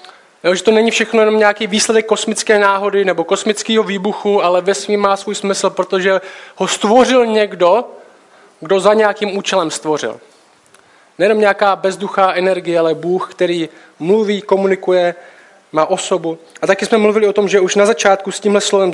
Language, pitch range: Czech, 170-210 Hz